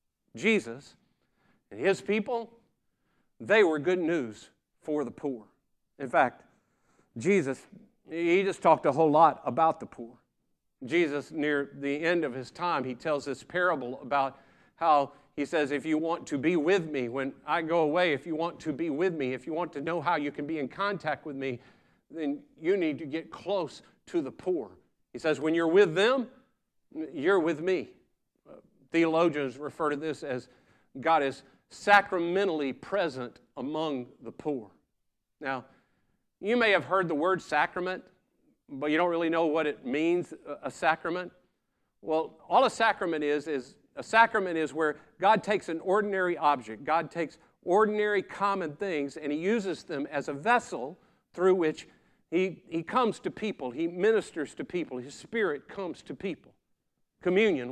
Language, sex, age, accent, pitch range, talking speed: English, male, 50-69, American, 145-195 Hz, 165 wpm